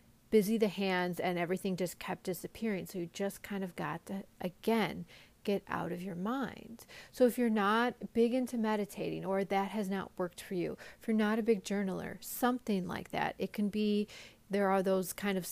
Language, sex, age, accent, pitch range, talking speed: English, female, 30-49, American, 180-215 Hz, 200 wpm